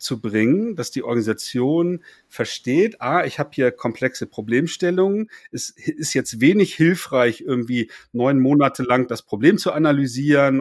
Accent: German